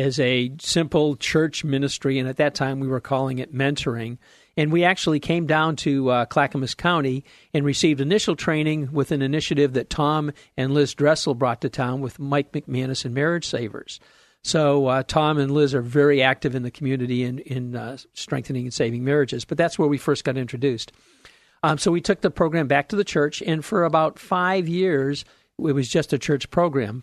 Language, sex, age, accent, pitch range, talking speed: English, male, 50-69, American, 135-155 Hz, 200 wpm